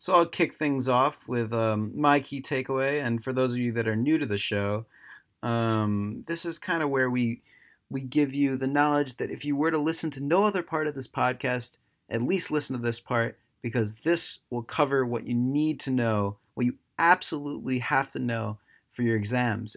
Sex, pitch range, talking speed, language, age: male, 110-140 Hz, 215 wpm, English, 30-49